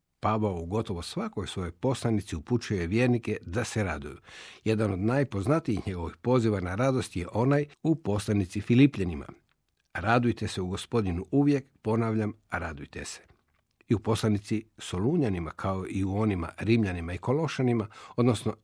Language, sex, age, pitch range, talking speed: Croatian, male, 60-79, 90-120 Hz, 140 wpm